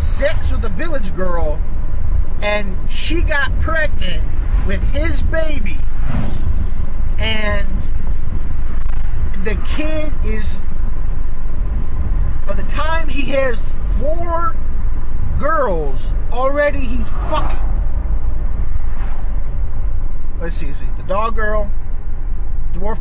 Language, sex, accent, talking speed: English, male, American, 85 wpm